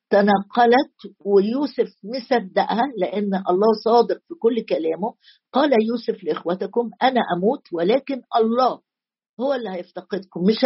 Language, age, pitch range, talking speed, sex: Arabic, 50-69, 190-245 Hz, 115 wpm, female